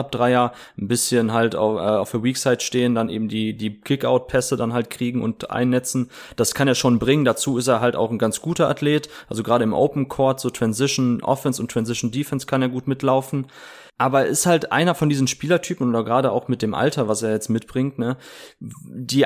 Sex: male